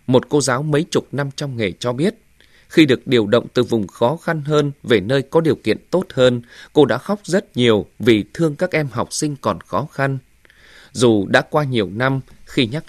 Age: 20-39